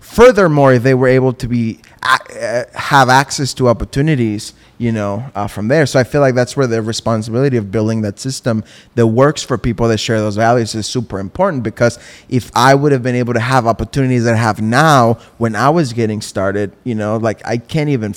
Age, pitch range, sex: 20-39, 110-135 Hz, male